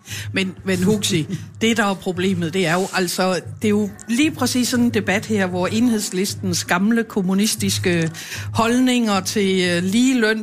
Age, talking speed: 60-79, 160 wpm